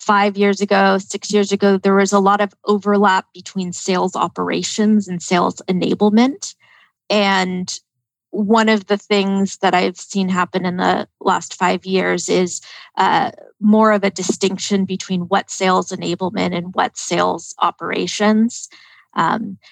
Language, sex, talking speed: English, female, 145 wpm